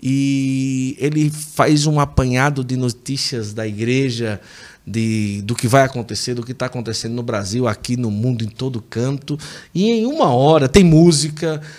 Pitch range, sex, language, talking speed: 130-170 Hz, male, Portuguese, 165 wpm